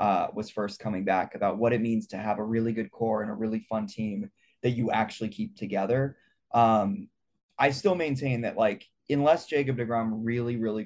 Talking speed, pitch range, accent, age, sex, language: 200 wpm, 110-130 Hz, American, 20-39, male, English